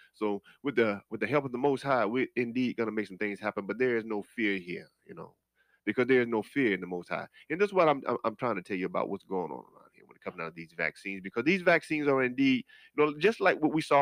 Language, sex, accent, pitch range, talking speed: English, male, American, 100-155 Hz, 295 wpm